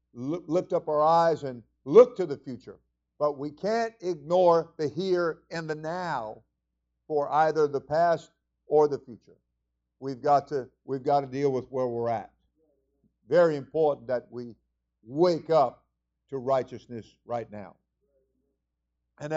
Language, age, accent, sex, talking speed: English, 50-69, American, male, 145 wpm